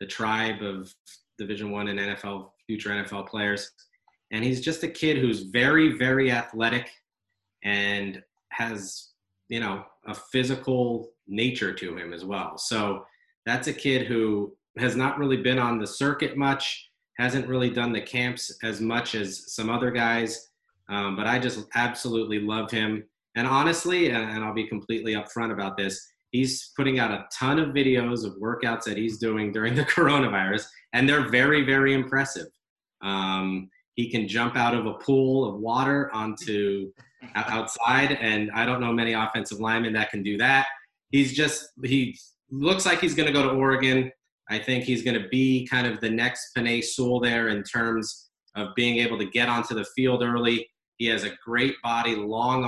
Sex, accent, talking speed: male, American, 175 wpm